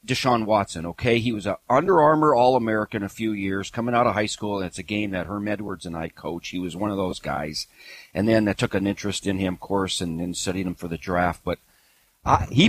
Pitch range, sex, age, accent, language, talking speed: 100-130 Hz, male, 40-59, American, English, 245 wpm